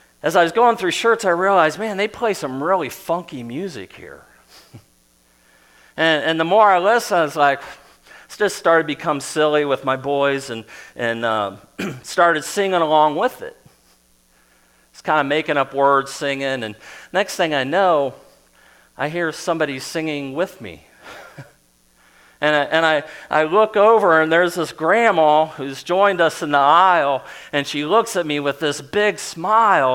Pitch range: 135-170 Hz